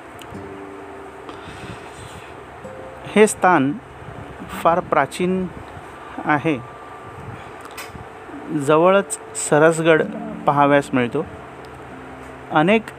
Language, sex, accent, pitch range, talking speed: Marathi, male, native, 145-170 Hz, 45 wpm